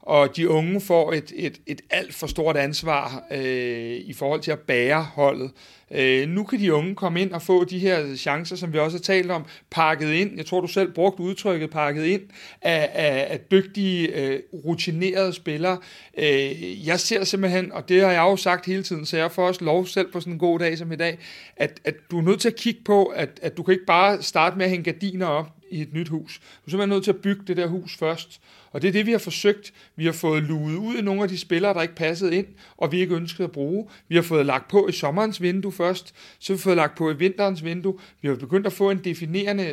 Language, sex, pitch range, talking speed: Danish, male, 155-195 Hz, 245 wpm